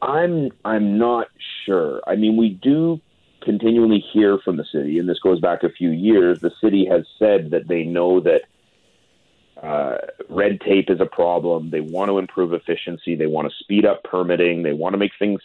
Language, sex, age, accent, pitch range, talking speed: English, male, 40-59, American, 85-105 Hz, 195 wpm